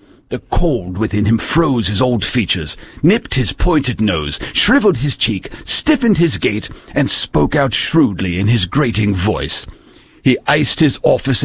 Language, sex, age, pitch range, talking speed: English, male, 50-69, 110-165 Hz, 155 wpm